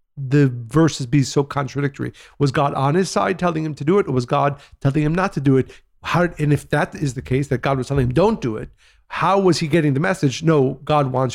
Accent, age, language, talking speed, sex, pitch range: American, 50-69, English, 255 wpm, male, 130-160 Hz